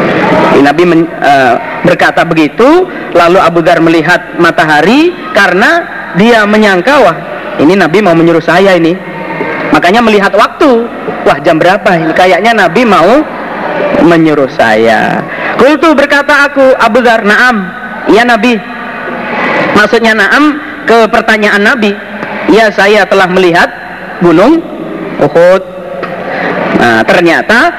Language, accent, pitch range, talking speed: Indonesian, native, 170-235 Hz, 115 wpm